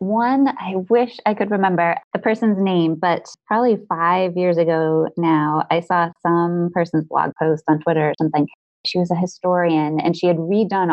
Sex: female